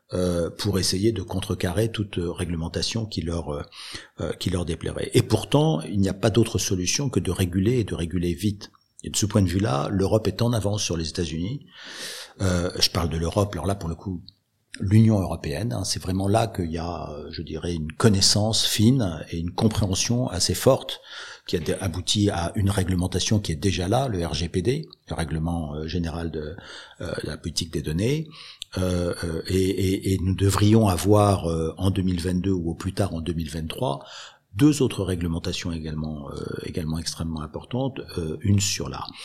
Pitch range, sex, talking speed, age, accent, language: 85-110 Hz, male, 180 wpm, 50-69, French, French